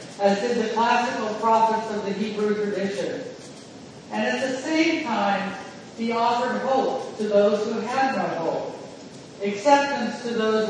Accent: American